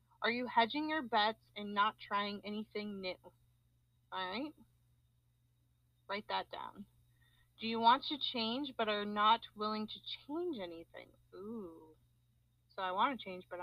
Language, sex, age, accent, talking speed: English, female, 30-49, American, 150 wpm